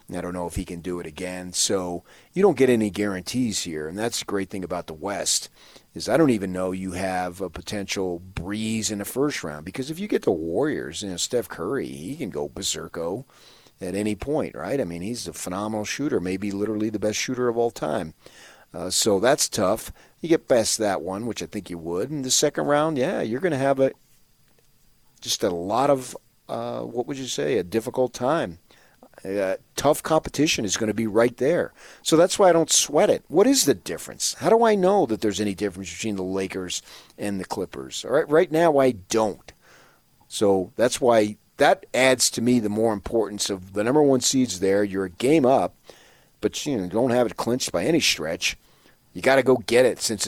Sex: male